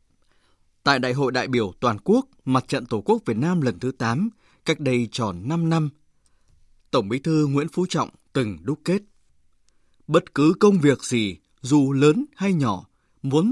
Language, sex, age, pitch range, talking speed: Vietnamese, male, 20-39, 125-180 Hz, 180 wpm